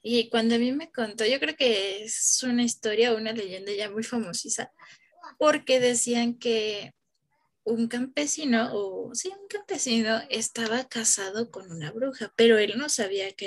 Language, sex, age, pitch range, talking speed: Spanish, female, 20-39, 215-260 Hz, 160 wpm